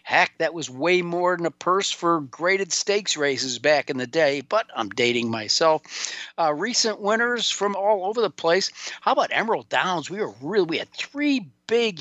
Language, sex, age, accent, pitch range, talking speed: English, male, 50-69, American, 140-175 Hz, 195 wpm